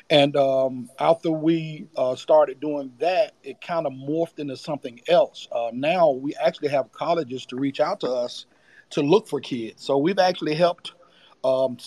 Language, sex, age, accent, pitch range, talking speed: English, male, 40-59, American, 140-175 Hz, 175 wpm